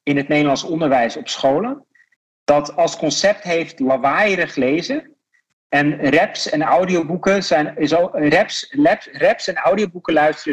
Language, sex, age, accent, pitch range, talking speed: Dutch, male, 40-59, Dutch, 140-195 Hz, 110 wpm